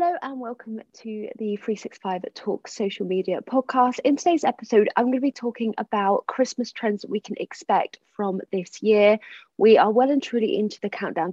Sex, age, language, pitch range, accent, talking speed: female, 20-39, English, 200-265 Hz, British, 190 wpm